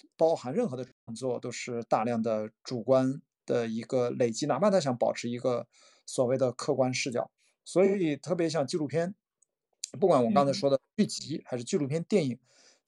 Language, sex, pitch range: Chinese, male, 125-160 Hz